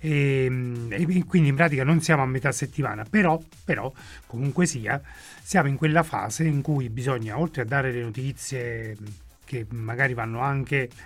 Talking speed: 155 wpm